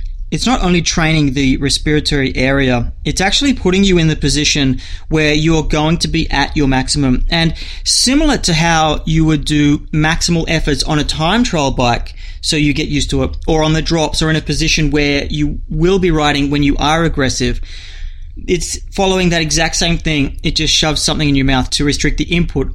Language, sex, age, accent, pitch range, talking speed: English, male, 30-49, Australian, 140-170 Hz, 200 wpm